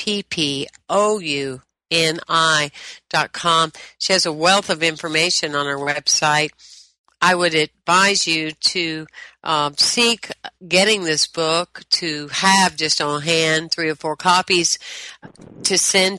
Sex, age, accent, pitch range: female, 50-69, American, 155-185 Hz